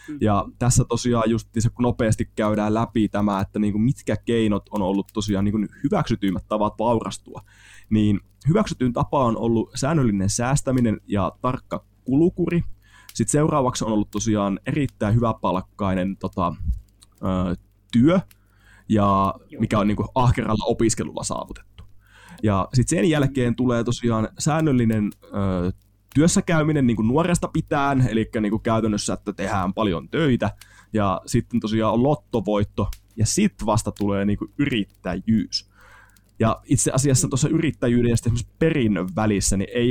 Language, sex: Finnish, male